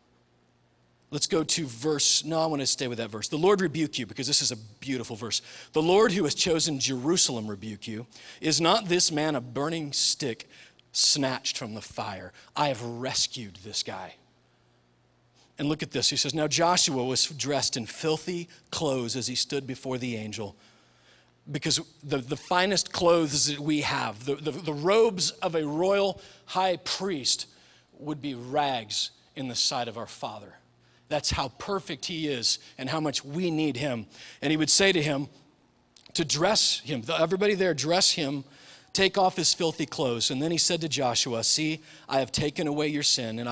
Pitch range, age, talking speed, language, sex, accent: 120-160 Hz, 40-59, 185 wpm, English, male, American